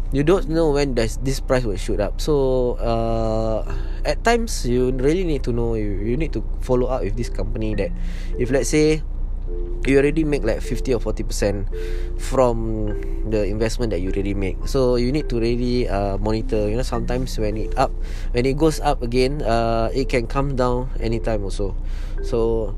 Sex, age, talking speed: male, 20-39, 185 wpm